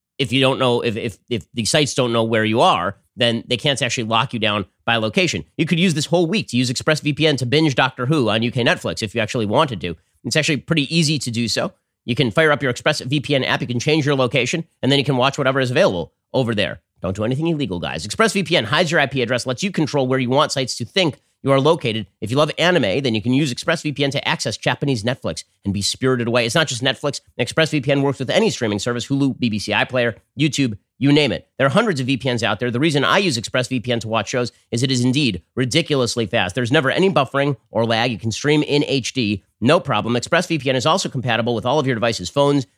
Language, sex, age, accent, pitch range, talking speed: English, male, 30-49, American, 115-150 Hz, 245 wpm